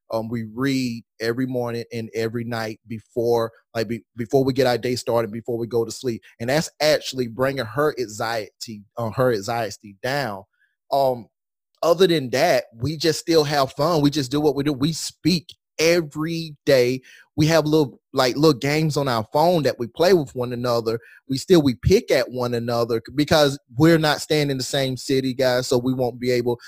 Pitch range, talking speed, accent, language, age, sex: 120-150 Hz, 200 wpm, American, English, 30-49, male